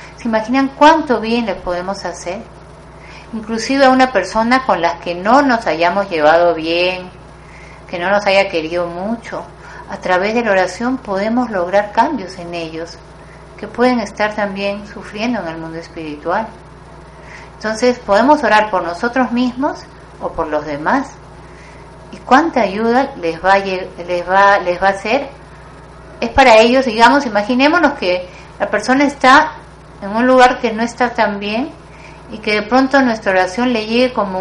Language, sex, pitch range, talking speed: Spanish, female, 180-245 Hz, 160 wpm